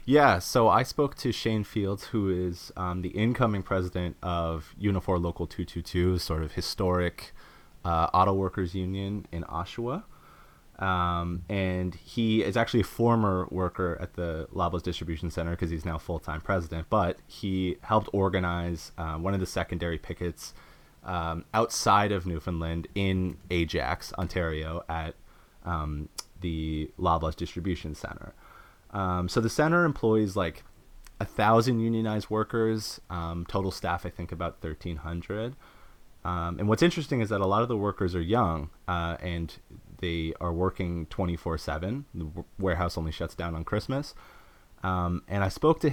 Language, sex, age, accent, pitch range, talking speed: English, male, 30-49, American, 85-100 Hz, 155 wpm